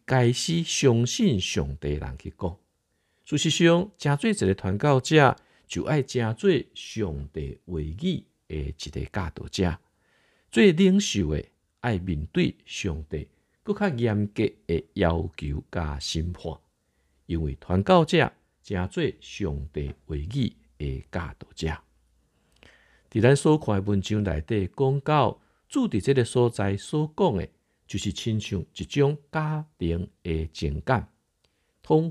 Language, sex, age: Chinese, male, 50-69